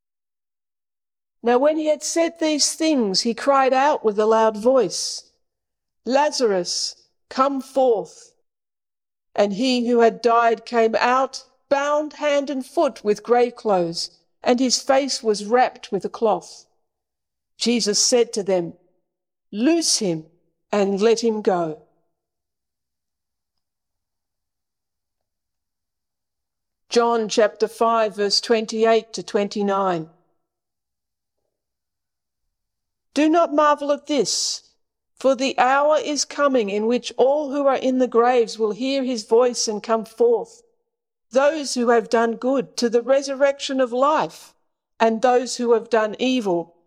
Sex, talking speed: female, 125 wpm